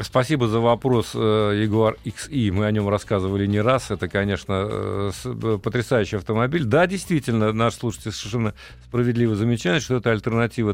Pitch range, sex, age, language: 105-130 Hz, male, 40-59, Russian